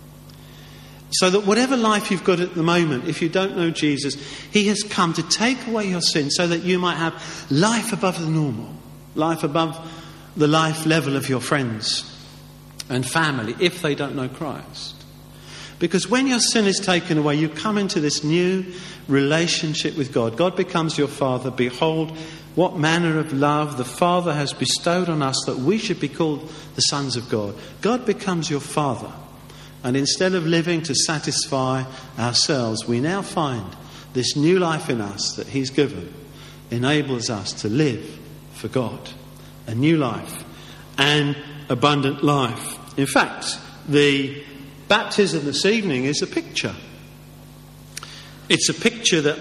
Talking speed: 160 wpm